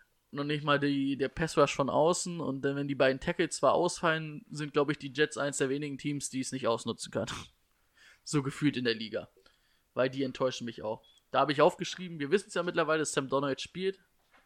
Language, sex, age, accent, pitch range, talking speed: German, male, 20-39, German, 135-160 Hz, 215 wpm